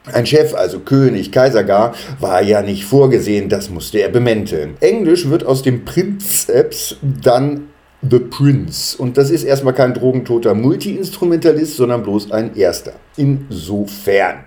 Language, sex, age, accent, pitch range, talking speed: German, male, 50-69, German, 120-150 Hz, 140 wpm